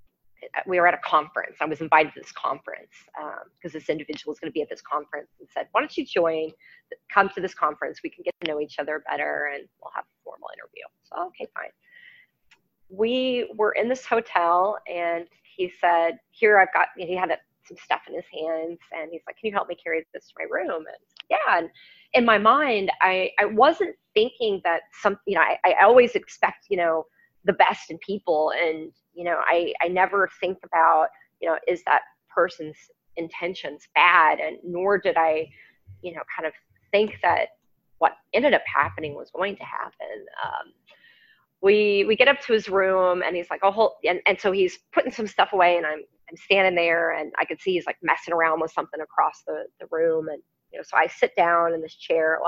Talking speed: 215 wpm